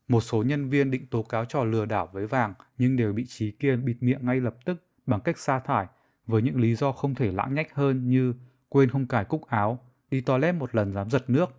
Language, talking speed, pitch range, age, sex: Vietnamese, 250 wpm, 110-135 Hz, 20-39, male